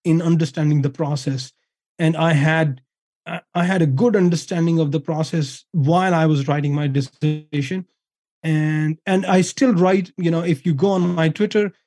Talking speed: 170 wpm